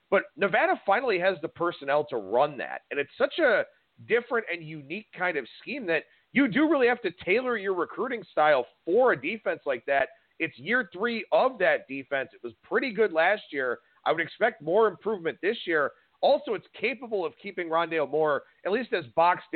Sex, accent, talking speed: male, American, 195 wpm